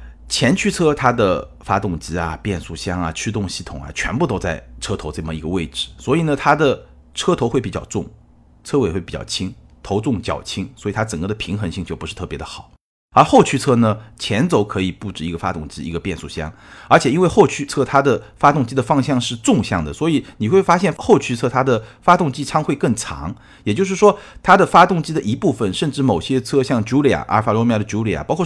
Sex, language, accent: male, Chinese, native